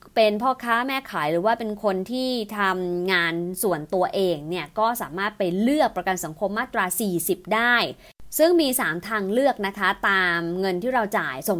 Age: 20-39